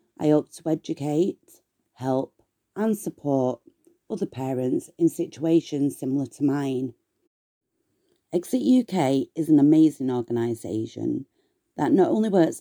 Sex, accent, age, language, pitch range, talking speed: female, British, 40-59, English, 145-185 Hz, 115 wpm